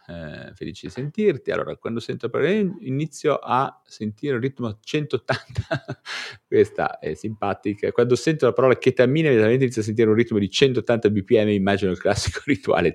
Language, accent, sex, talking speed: Italian, native, male, 160 wpm